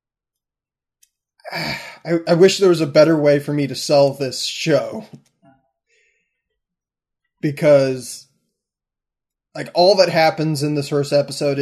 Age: 20-39